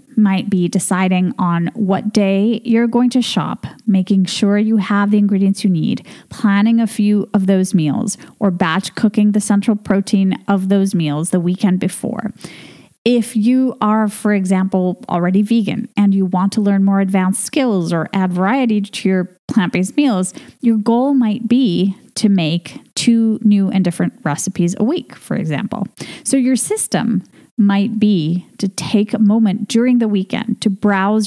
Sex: female